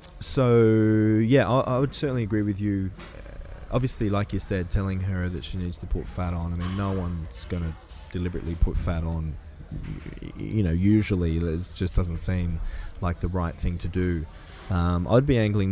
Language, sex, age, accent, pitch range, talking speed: English, male, 20-39, Australian, 85-100 Hz, 190 wpm